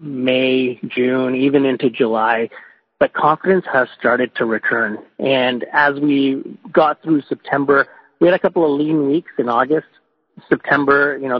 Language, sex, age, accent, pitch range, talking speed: English, male, 40-59, American, 125-150 Hz, 155 wpm